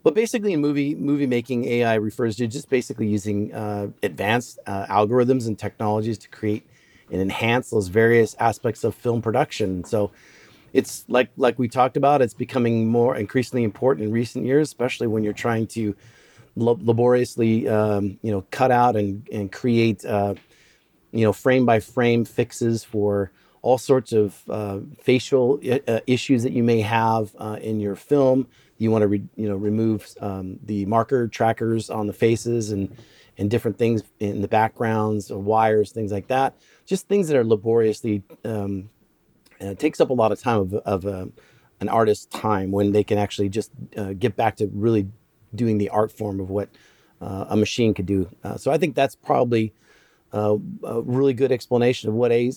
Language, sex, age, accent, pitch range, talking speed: English, male, 40-59, American, 105-125 Hz, 185 wpm